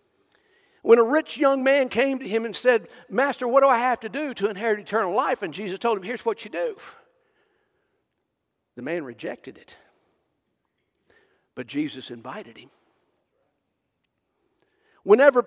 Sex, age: male, 60-79